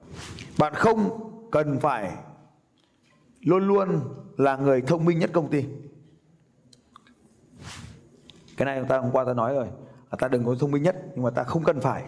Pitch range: 125-160 Hz